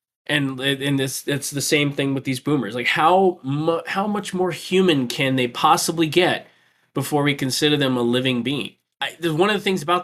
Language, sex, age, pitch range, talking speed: English, male, 20-39, 125-165 Hz, 195 wpm